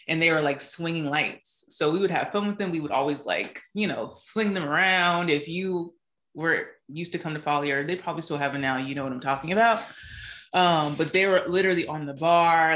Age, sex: 20-39, female